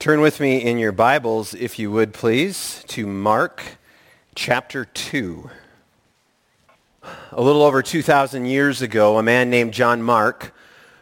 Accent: American